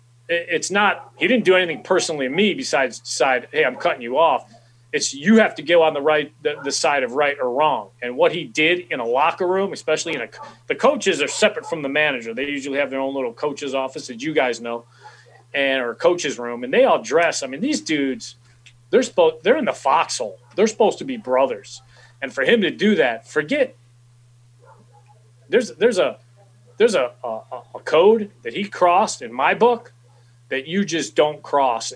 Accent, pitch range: American, 120-175 Hz